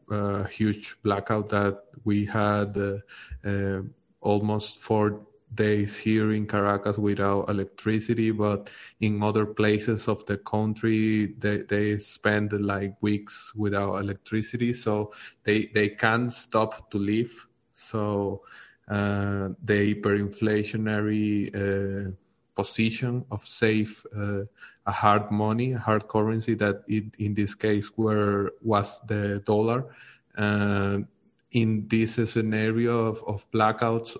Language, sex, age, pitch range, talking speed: English, male, 20-39, 105-110 Hz, 120 wpm